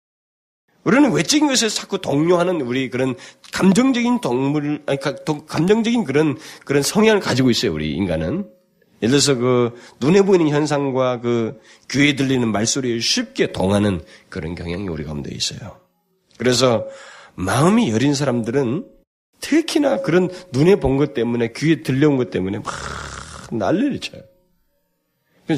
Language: Korean